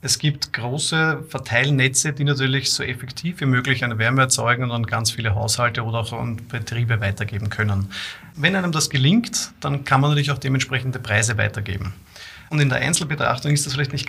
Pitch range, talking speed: 120-145 Hz, 185 wpm